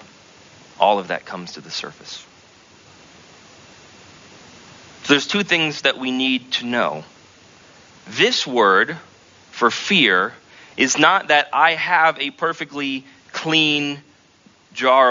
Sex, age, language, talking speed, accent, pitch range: male, 30-49, English, 110 wpm, American, 120-145 Hz